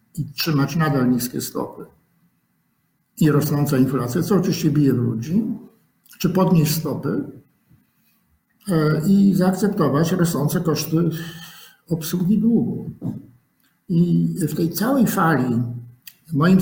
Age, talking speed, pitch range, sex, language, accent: 50-69, 100 wpm, 130-165 Hz, male, Polish, native